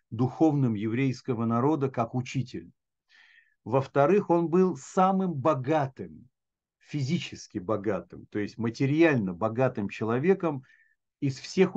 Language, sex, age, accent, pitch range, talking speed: Russian, male, 50-69, native, 125-165 Hz, 95 wpm